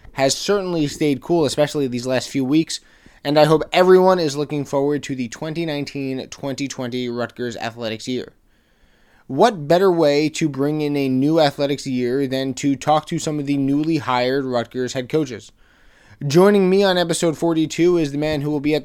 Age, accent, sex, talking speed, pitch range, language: 20-39, American, male, 180 wpm, 130-170 Hz, English